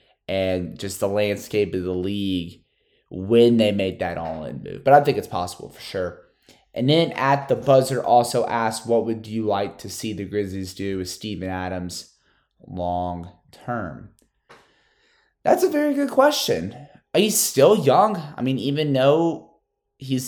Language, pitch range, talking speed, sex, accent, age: English, 90-120 Hz, 160 wpm, male, American, 20-39